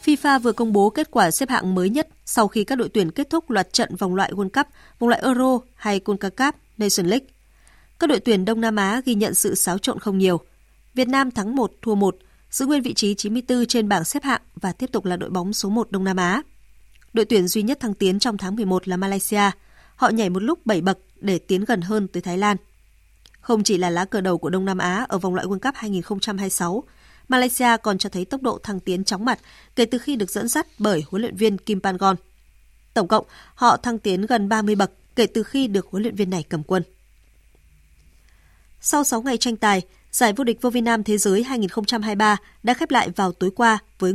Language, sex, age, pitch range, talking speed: Vietnamese, female, 20-39, 185-235 Hz, 230 wpm